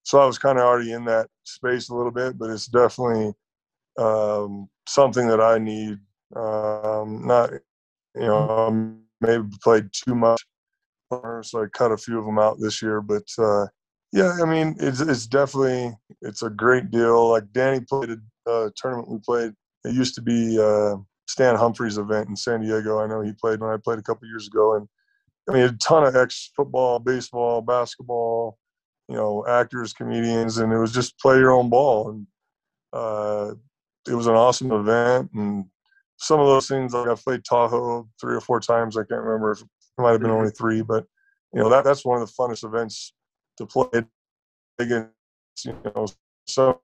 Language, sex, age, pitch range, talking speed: English, male, 20-39, 110-125 Hz, 190 wpm